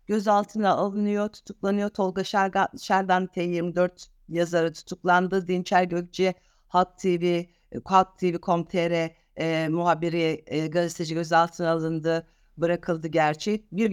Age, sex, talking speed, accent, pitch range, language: 60-79, female, 105 wpm, native, 175-215 Hz, Turkish